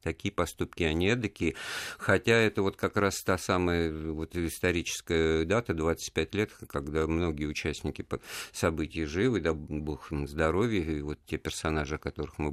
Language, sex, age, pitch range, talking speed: Russian, male, 50-69, 80-105 Hz, 155 wpm